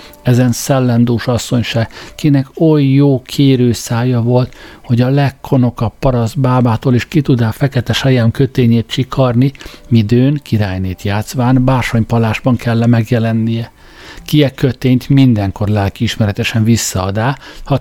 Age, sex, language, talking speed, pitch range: 60-79, male, Hungarian, 120 wpm, 110-135 Hz